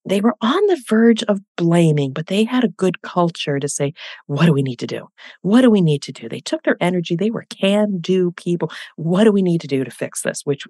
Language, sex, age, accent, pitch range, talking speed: English, female, 40-59, American, 145-210 Hz, 250 wpm